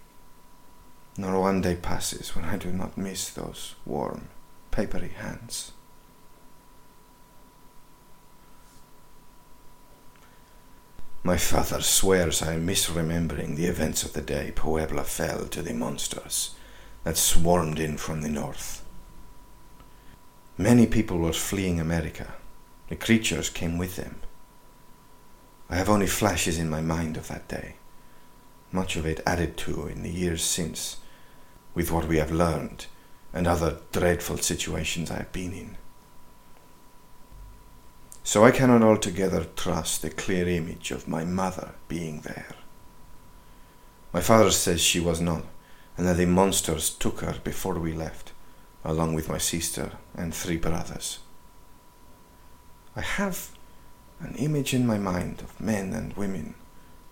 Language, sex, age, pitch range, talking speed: English, male, 50-69, 80-95 Hz, 130 wpm